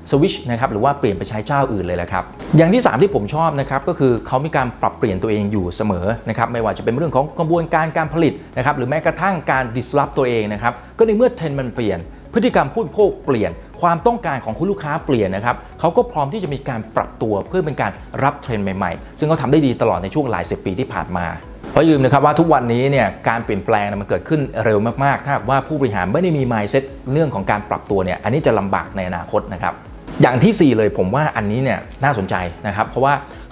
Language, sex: Thai, male